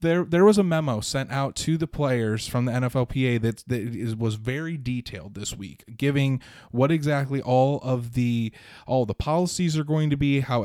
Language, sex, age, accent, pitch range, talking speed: English, male, 20-39, American, 110-140 Hz, 195 wpm